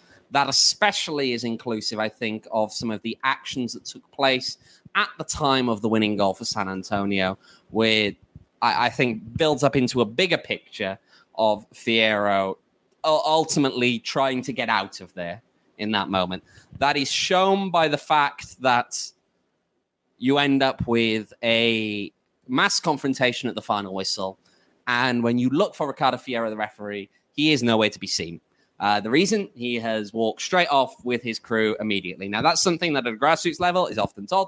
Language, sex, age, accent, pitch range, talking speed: English, male, 20-39, British, 115-160 Hz, 175 wpm